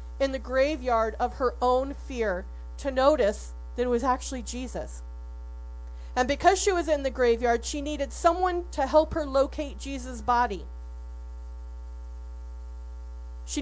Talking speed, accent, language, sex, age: 135 wpm, American, English, female, 40-59